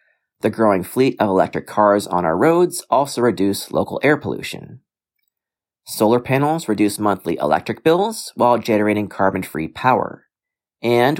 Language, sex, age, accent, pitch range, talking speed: English, male, 40-59, American, 100-140 Hz, 135 wpm